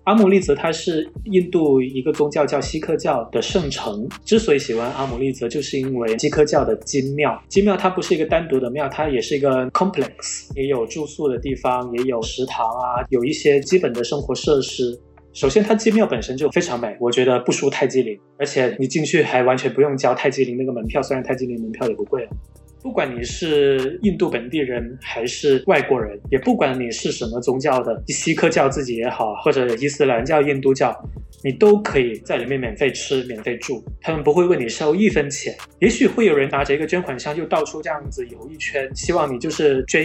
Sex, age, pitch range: male, 20-39, 125-165 Hz